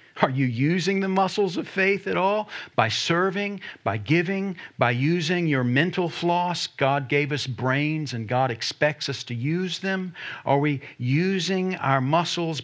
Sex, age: male, 50-69